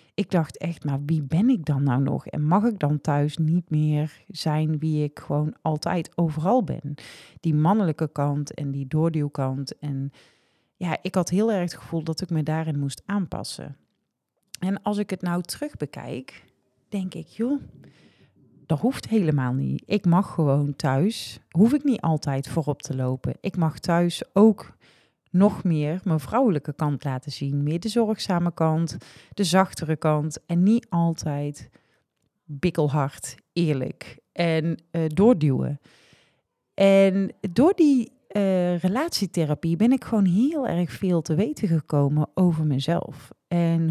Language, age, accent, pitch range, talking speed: Dutch, 40-59, Dutch, 150-195 Hz, 150 wpm